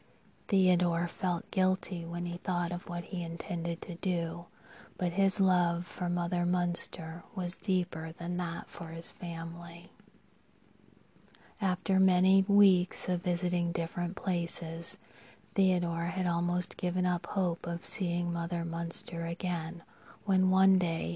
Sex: female